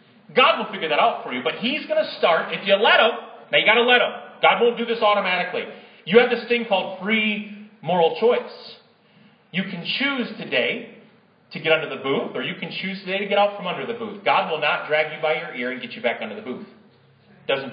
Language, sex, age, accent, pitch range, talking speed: English, male, 30-49, American, 170-220 Hz, 245 wpm